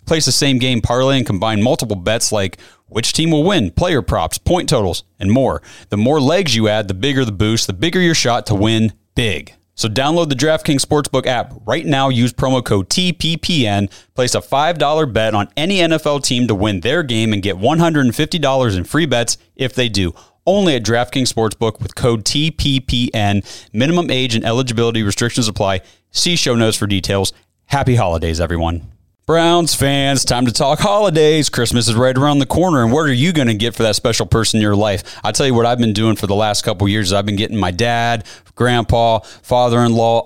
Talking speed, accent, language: 200 wpm, American, English